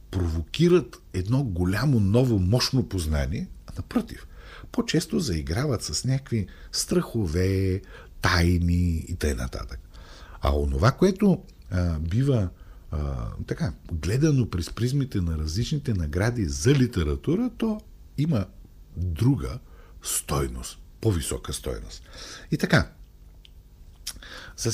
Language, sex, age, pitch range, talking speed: Bulgarian, male, 50-69, 80-125 Hz, 95 wpm